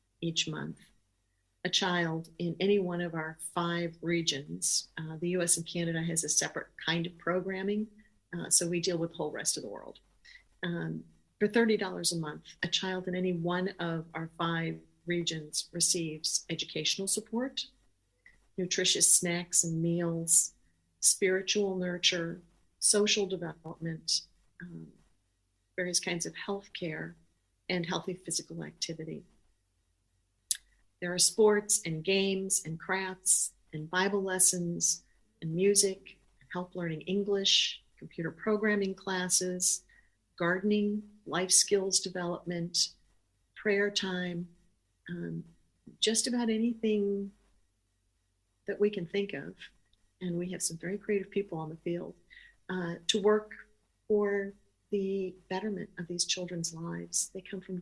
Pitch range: 160-190 Hz